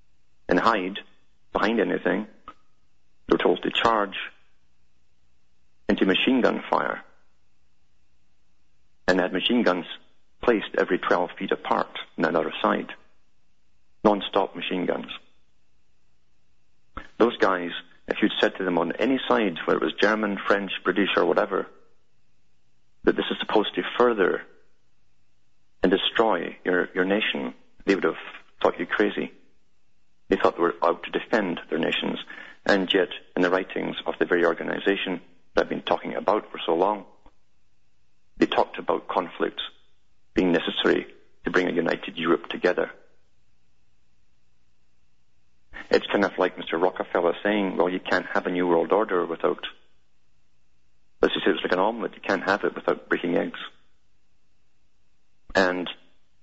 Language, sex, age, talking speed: English, male, 40-59, 140 wpm